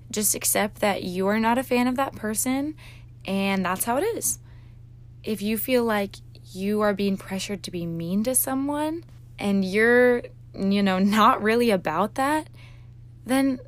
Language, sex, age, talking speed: English, female, 20-39, 165 wpm